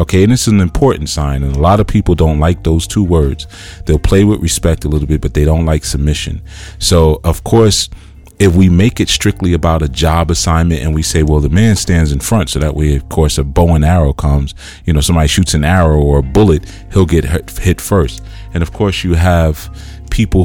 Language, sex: English, male